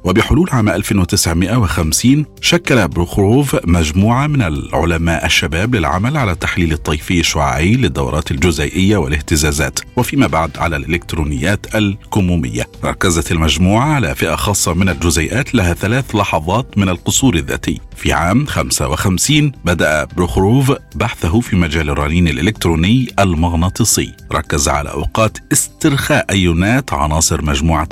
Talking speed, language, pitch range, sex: 115 wpm, Arabic, 80-110 Hz, male